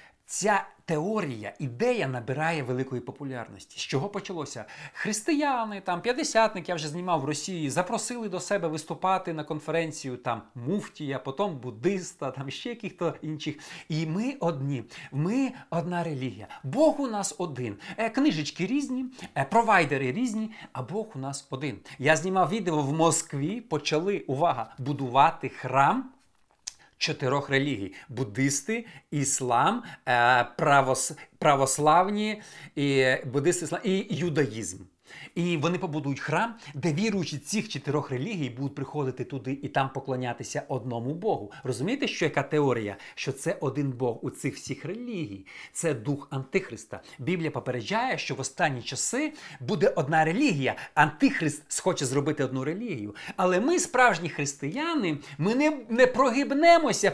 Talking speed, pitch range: 130 wpm, 135-195 Hz